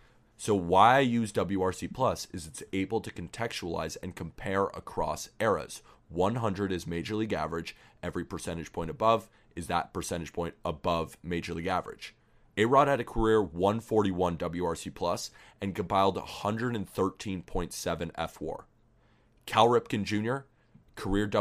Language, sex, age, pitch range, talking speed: English, male, 30-49, 95-110 Hz, 130 wpm